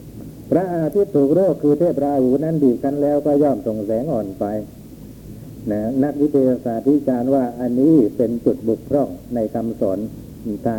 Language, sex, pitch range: Thai, male, 115-145 Hz